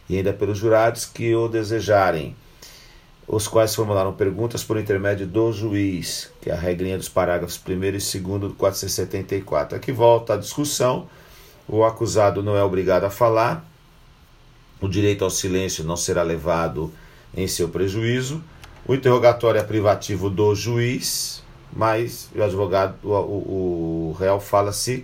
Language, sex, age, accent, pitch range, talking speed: Portuguese, male, 50-69, Brazilian, 95-115 Hz, 150 wpm